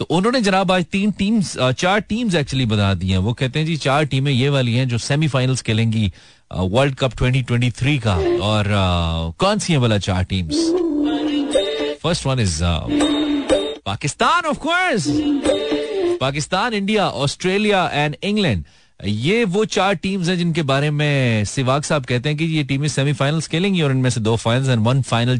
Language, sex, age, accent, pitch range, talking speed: Hindi, male, 30-49, native, 120-175 Hz, 160 wpm